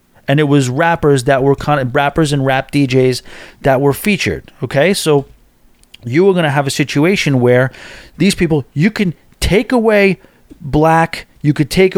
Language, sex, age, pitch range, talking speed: English, male, 30-49, 140-185 Hz, 175 wpm